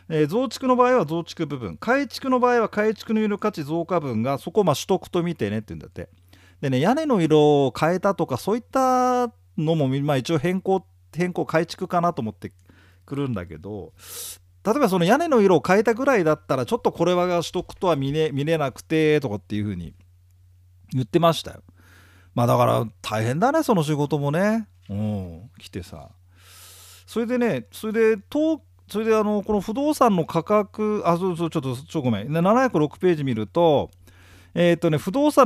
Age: 40-59